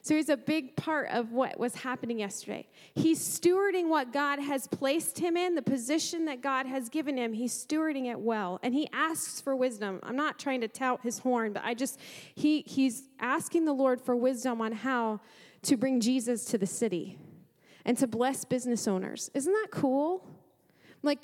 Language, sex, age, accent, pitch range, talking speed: English, female, 30-49, American, 220-275 Hz, 190 wpm